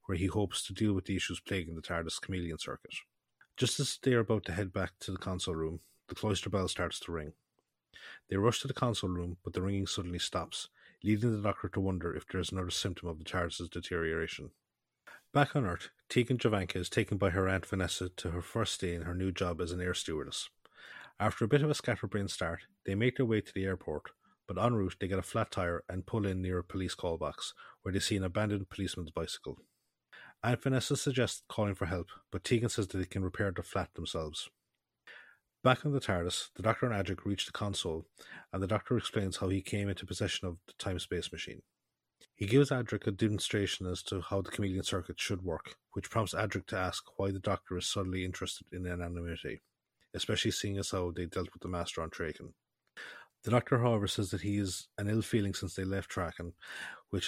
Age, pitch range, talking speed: 30-49, 90-110 Hz, 220 wpm